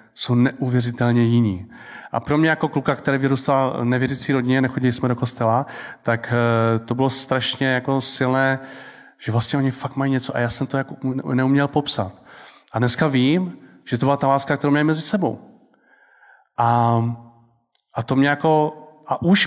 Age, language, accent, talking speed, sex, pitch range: 30-49, Czech, native, 165 wpm, male, 120-155 Hz